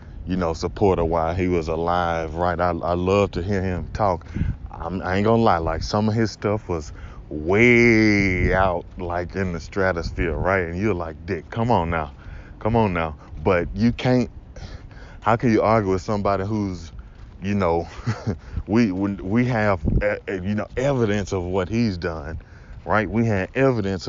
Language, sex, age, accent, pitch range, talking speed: English, male, 20-39, American, 85-110 Hz, 170 wpm